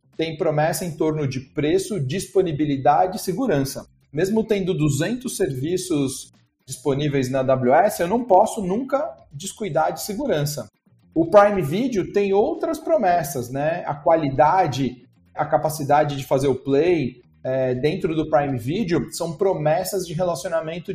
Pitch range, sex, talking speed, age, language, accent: 145-200 Hz, male, 130 wpm, 40-59, Portuguese, Brazilian